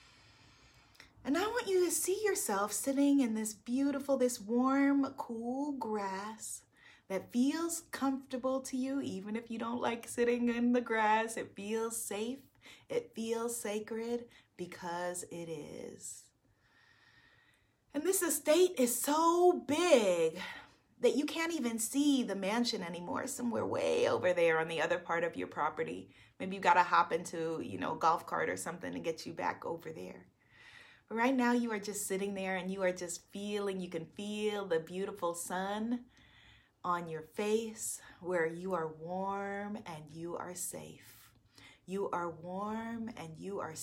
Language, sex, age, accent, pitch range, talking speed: English, female, 30-49, American, 175-250 Hz, 160 wpm